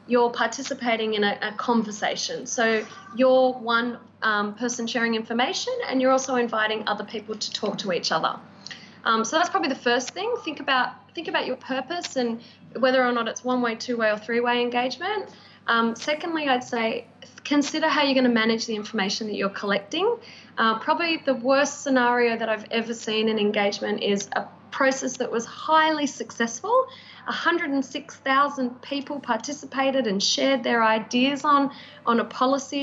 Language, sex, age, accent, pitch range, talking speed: English, female, 20-39, Australian, 220-270 Hz, 165 wpm